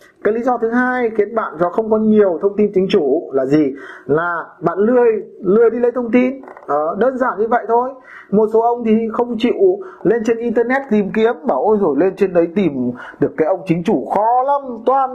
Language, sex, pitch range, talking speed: Vietnamese, male, 175-240 Hz, 225 wpm